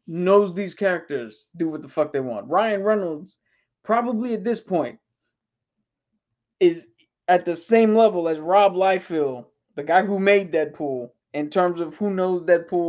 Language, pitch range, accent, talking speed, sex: English, 150-180 Hz, American, 160 wpm, male